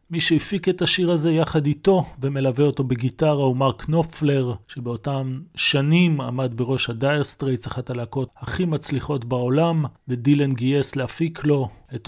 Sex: male